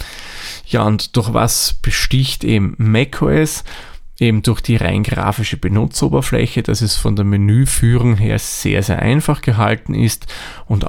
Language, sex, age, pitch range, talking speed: German, male, 20-39, 100-120 Hz, 140 wpm